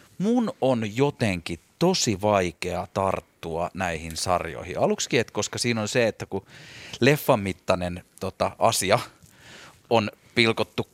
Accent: native